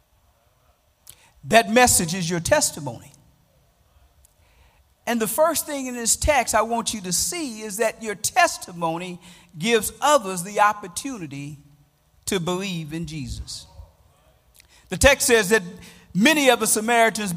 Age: 50-69